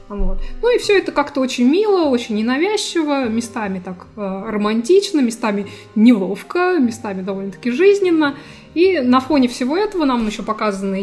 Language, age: Russian, 20-39